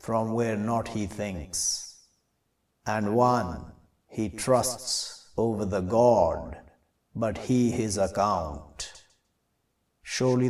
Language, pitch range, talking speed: English, 85-125 Hz, 95 wpm